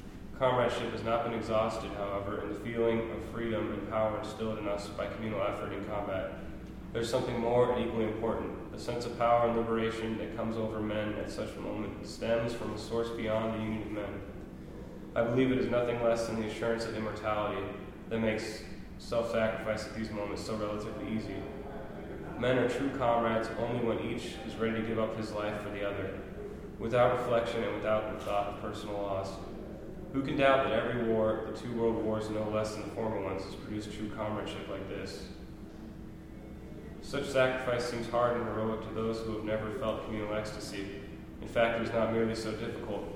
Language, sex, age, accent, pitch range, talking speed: English, male, 20-39, American, 105-115 Hz, 195 wpm